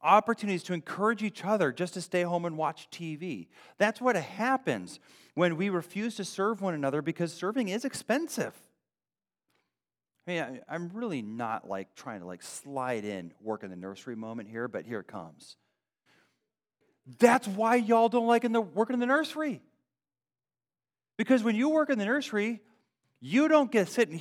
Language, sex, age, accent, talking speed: English, male, 40-59, American, 170 wpm